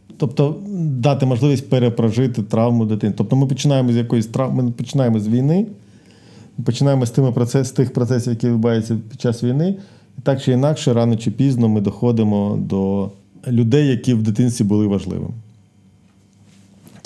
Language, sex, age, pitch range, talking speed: Ukrainian, male, 40-59, 100-125 Hz, 150 wpm